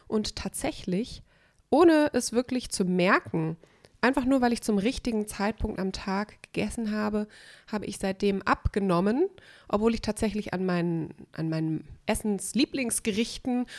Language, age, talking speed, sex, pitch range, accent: German, 20-39, 125 wpm, female, 185-240 Hz, German